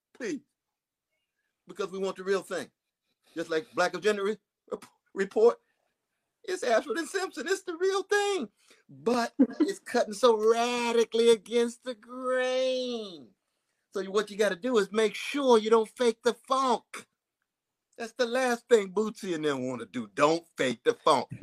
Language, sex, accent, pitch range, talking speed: English, male, American, 150-235 Hz, 155 wpm